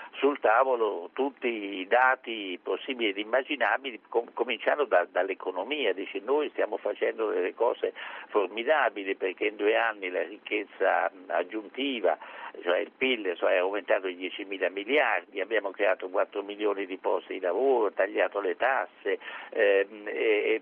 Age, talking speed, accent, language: 60-79, 130 wpm, native, Italian